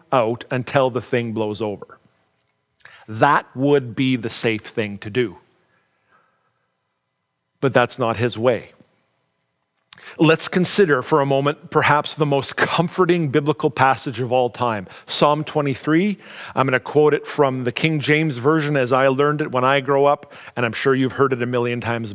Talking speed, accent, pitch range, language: 170 wpm, American, 125-155 Hz, English